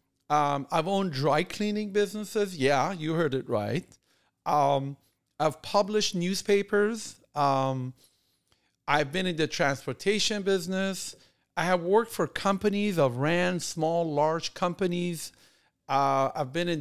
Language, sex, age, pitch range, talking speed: English, male, 50-69, 130-185 Hz, 130 wpm